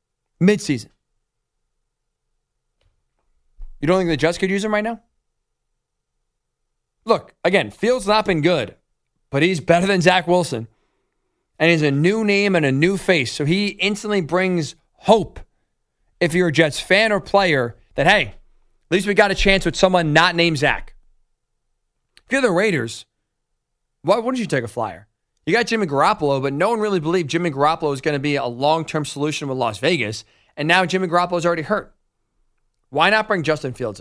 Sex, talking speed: male, 175 wpm